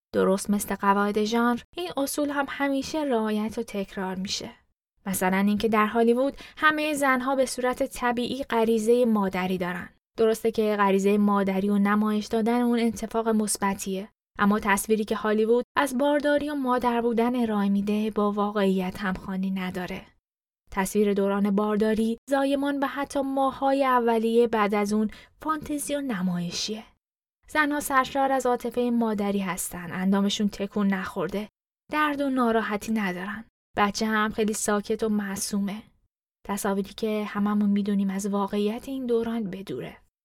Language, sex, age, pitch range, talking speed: Persian, female, 10-29, 200-255 Hz, 135 wpm